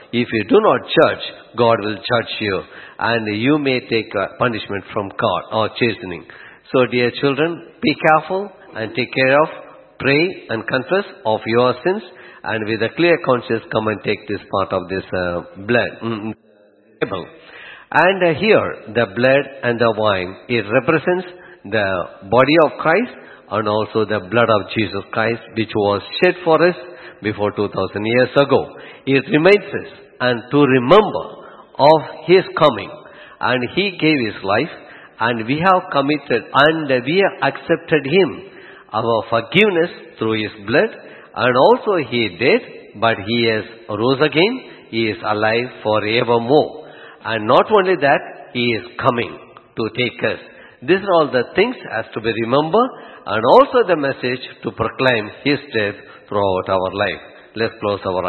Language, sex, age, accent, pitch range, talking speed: English, male, 50-69, Indian, 110-155 Hz, 160 wpm